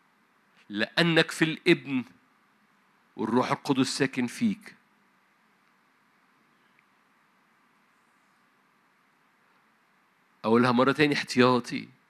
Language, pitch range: Arabic, 130-170 Hz